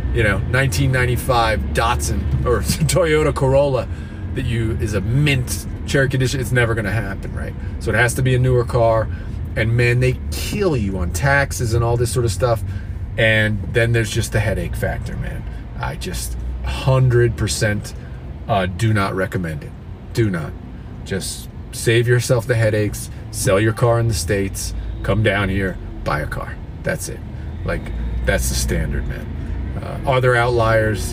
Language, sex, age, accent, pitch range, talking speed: English, male, 40-59, American, 85-115 Hz, 165 wpm